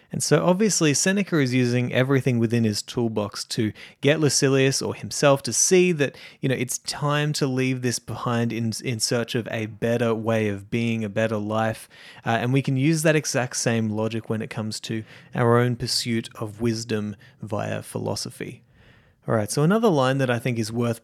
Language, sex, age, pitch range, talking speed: English, male, 30-49, 115-135 Hz, 195 wpm